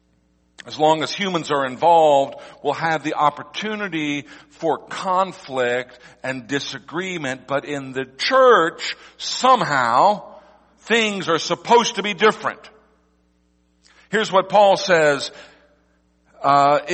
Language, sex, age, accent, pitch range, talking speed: English, male, 50-69, American, 145-210 Hz, 105 wpm